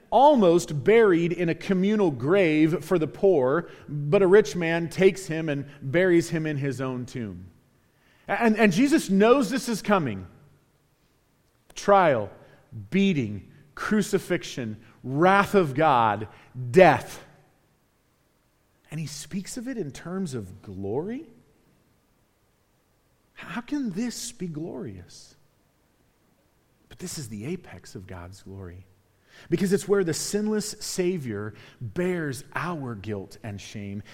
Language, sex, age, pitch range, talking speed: English, male, 40-59, 125-190 Hz, 120 wpm